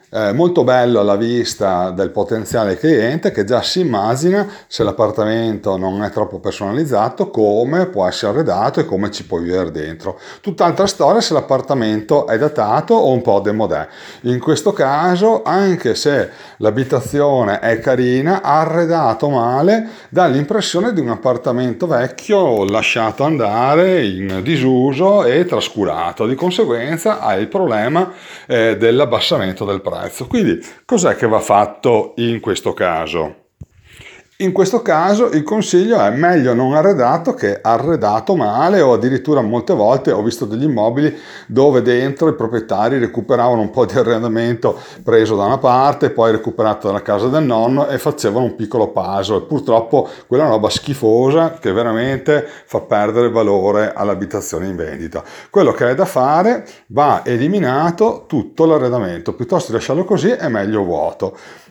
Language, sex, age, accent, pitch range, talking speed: Italian, male, 40-59, native, 115-175 Hz, 145 wpm